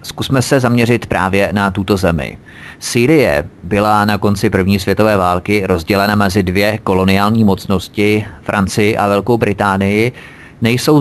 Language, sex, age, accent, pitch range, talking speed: Czech, male, 30-49, native, 100-120 Hz, 130 wpm